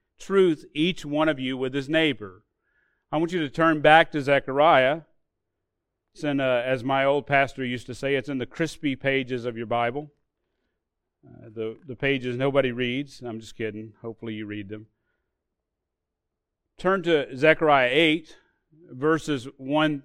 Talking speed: 160 wpm